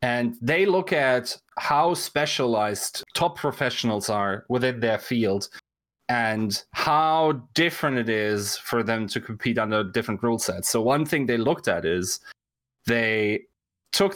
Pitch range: 110-155 Hz